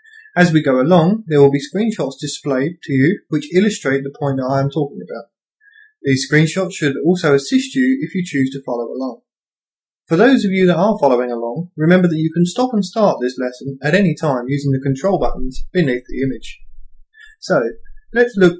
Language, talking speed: English, 200 wpm